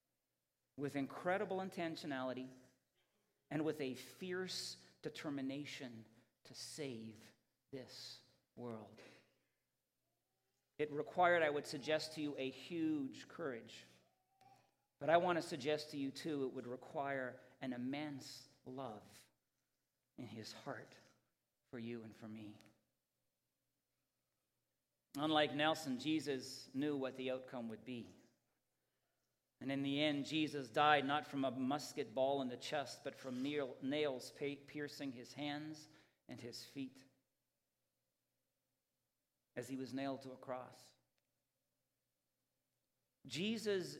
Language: English